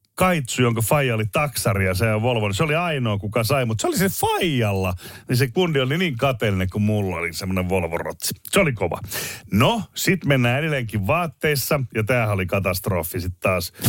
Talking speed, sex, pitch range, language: 195 wpm, male, 105-145 Hz, Finnish